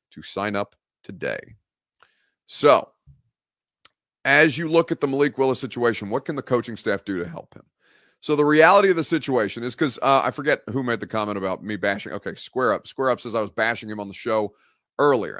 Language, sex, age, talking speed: English, male, 30-49, 205 wpm